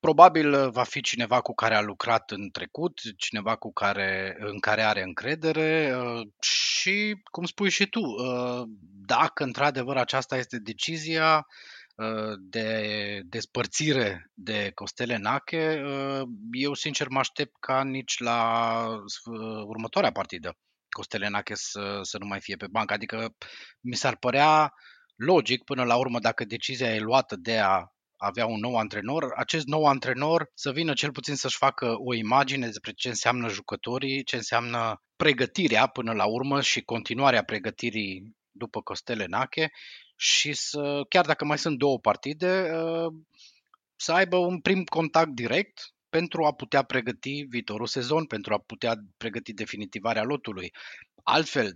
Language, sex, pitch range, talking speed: Romanian, male, 110-145 Hz, 140 wpm